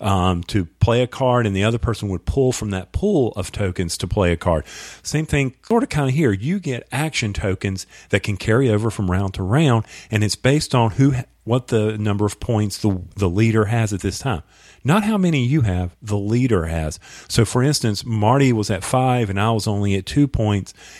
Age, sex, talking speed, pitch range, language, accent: 40-59, male, 225 wpm, 100-130 Hz, English, American